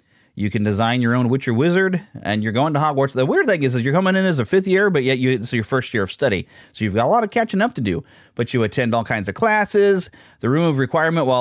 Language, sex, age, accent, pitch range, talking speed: English, male, 30-49, American, 105-145 Hz, 290 wpm